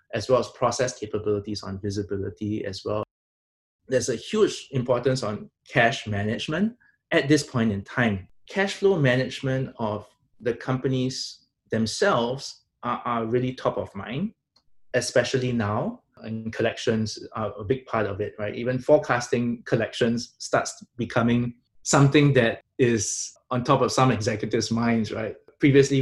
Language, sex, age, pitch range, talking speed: English, male, 20-39, 110-130 Hz, 140 wpm